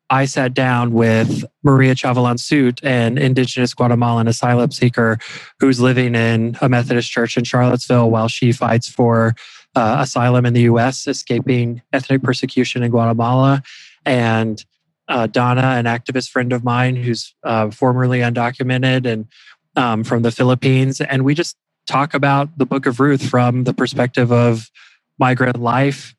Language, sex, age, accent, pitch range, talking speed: English, male, 20-39, American, 120-135 Hz, 155 wpm